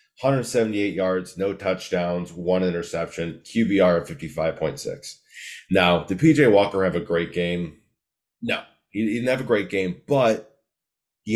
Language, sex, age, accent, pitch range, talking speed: English, male, 30-49, American, 85-110 Hz, 135 wpm